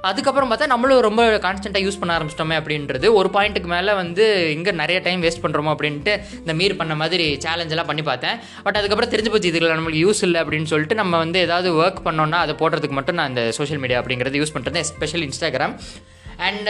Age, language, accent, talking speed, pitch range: 20-39, Tamil, native, 195 wpm, 150-190 Hz